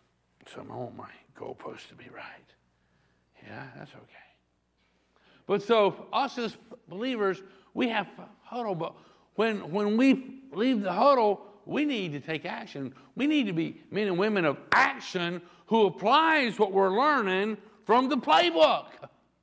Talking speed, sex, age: 150 wpm, male, 60-79